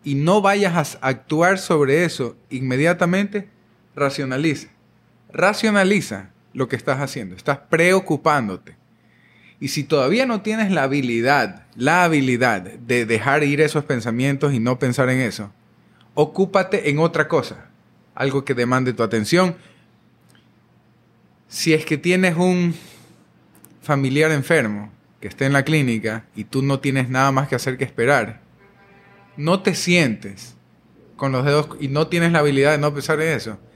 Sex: male